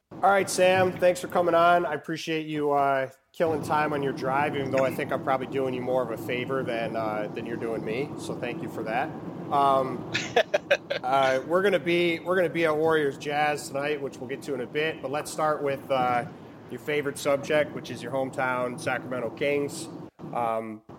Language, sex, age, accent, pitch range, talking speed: English, male, 30-49, American, 125-160 Hz, 210 wpm